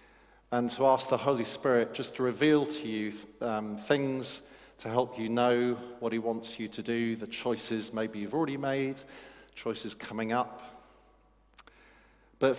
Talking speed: 155 wpm